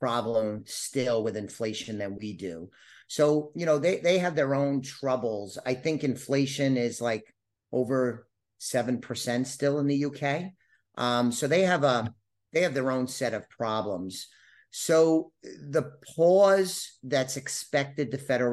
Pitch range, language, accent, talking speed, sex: 110-140 Hz, English, American, 150 wpm, male